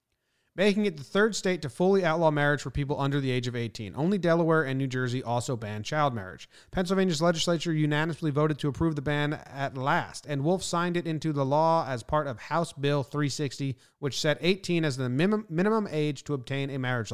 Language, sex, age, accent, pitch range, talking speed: English, male, 30-49, American, 140-180 Hz, 205 wpm